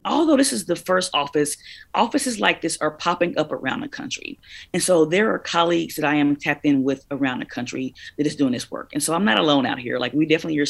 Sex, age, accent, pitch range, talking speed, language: female, 30-49, American, 140-165 Hz, 250 wpm, English